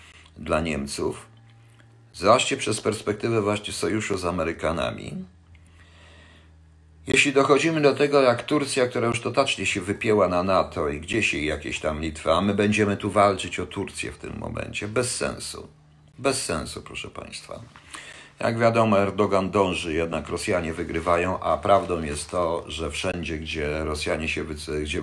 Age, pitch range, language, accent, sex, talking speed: 50-69, 80-115 Hz, Polish, native, male, 145 wpm